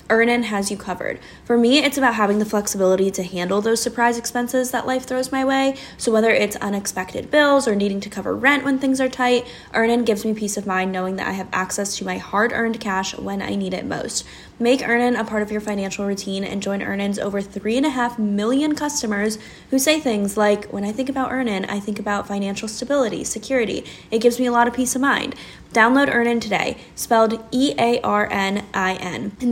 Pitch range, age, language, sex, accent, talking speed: 200-245 Hz, 10-29, English, female, American, 210 wpm